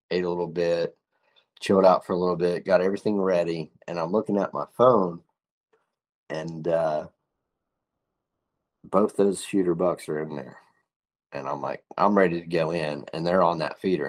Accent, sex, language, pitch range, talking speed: American, male, English, 80-100 Hz, 175 wpm